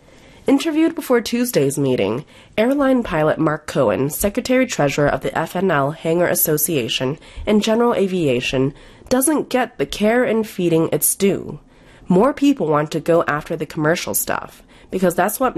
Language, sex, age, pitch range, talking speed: English, female, 30-49, 145-215 Hz, 145 wpm